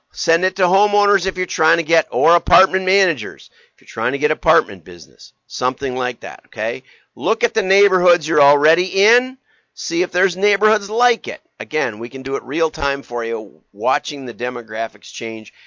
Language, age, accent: English, 50-69, American